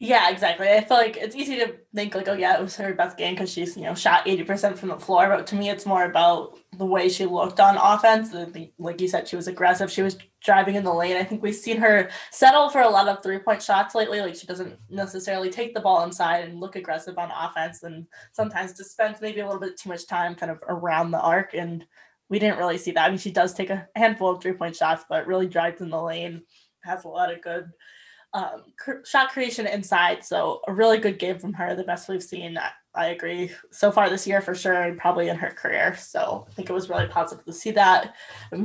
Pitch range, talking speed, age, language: 175-210 Hz, 250 wpm, 10-29, English